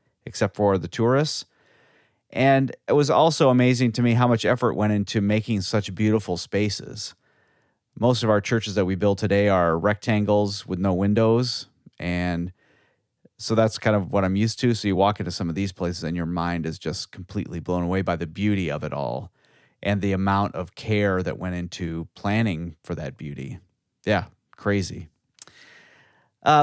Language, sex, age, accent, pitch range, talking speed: English, male, 30-49, American, 95-115 Hz, 180 wpm